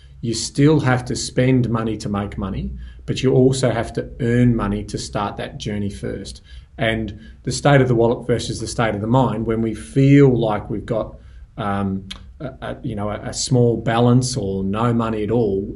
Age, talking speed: 30-49, 200 wpm